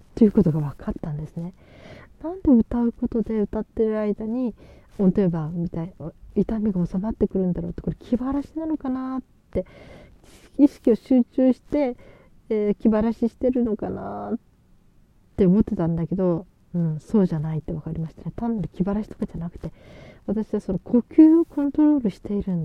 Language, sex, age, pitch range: Japanese, female, 40-59, 165-225 Hz